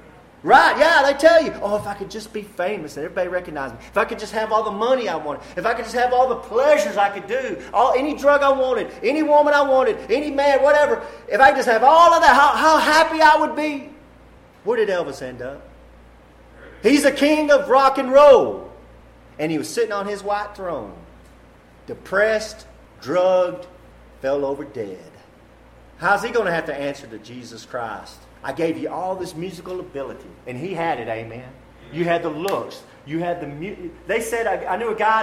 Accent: American